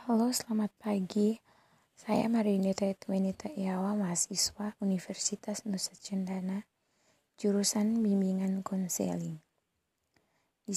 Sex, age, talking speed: female, 20-39, 85 wpm